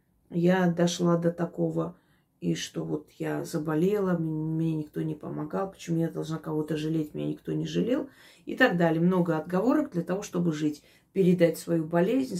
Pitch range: 155-180 Hz